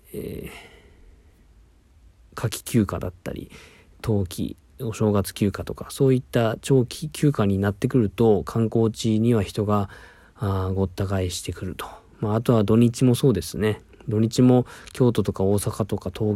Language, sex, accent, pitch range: Japanese, male, native, 95-120 Hz